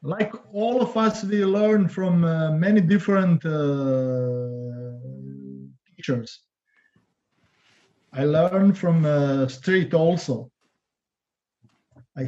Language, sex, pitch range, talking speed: English, male, 135-180 Hz, 95 wpm